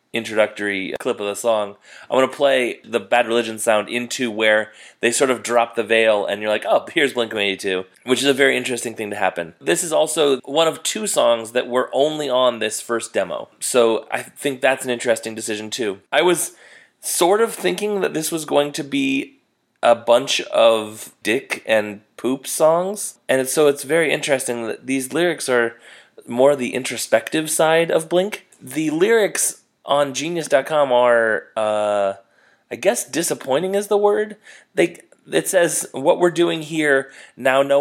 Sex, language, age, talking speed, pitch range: male, English, 30-49, 180 wpm, 115-155 Hz